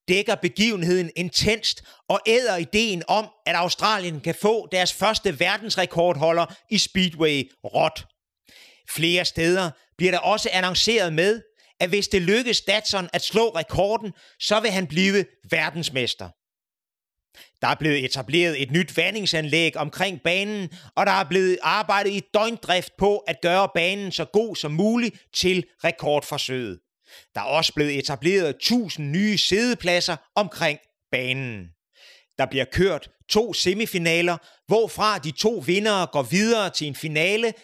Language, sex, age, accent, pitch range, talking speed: Danish, male, 30-49, native, 155-200 Hz, 140 wpm